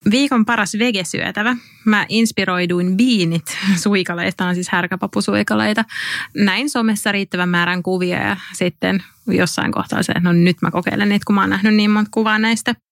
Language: English